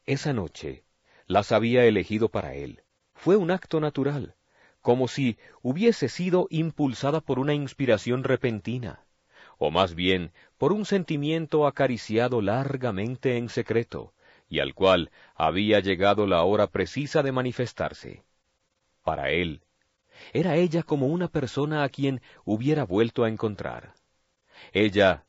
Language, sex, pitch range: Spanish, male, 105-145 Hz